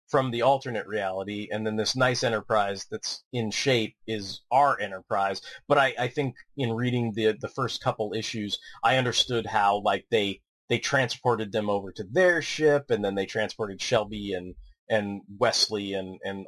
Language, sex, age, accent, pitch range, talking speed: English, male, 30-49, American, 105-130 Hz, 175 wpm